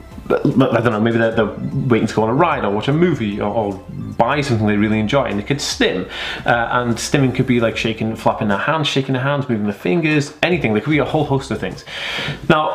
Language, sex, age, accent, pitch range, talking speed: English, male, 20-39, British, 105-130 Hz, 250 wpm